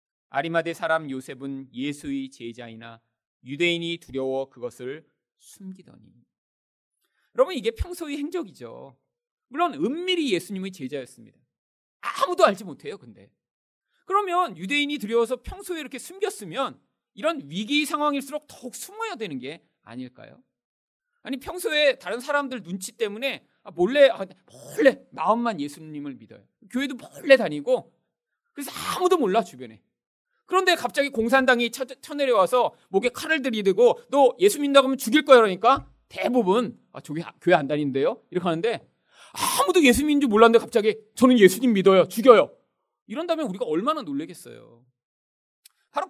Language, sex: Korean, male